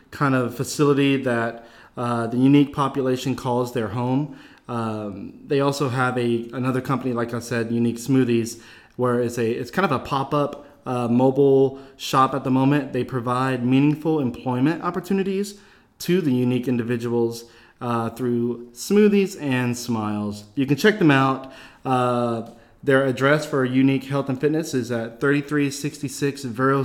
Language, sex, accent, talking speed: English, male, American, 150 wpm